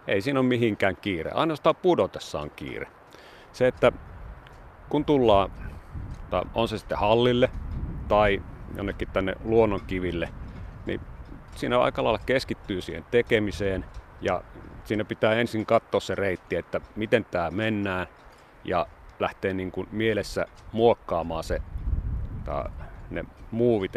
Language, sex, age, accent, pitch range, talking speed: Finnish, male, 40-59, native, 95-110 Hz, 125 wpm